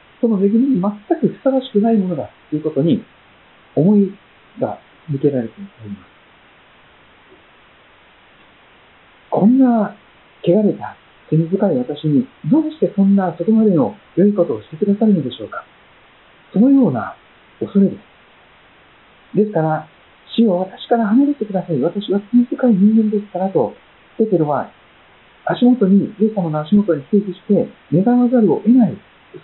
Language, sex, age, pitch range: Japanese, male, 50-69, 170-225 Hz